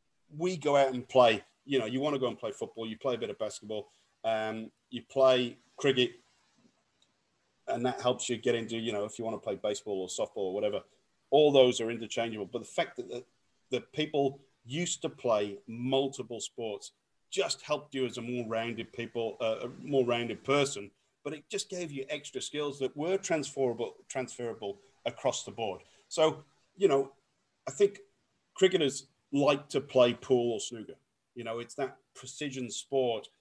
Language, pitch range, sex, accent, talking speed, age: English, 120-145 Hz, male, British, 185 wpm, 40-59